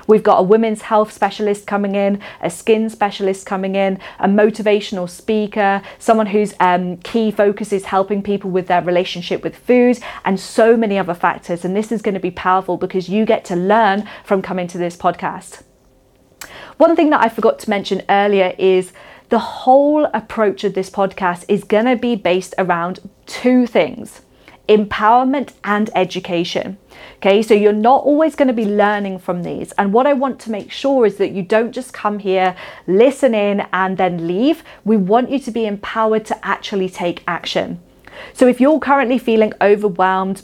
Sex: female